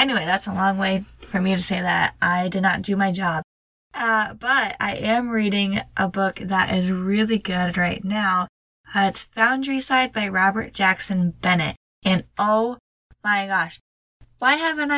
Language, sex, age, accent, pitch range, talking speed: English, female, 10-29, American, 180-215 Hz, 170 wpm